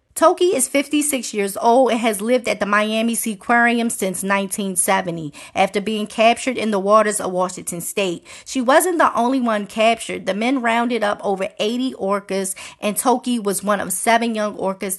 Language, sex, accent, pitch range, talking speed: English, female, American, 200-245 Hz, 180 wpm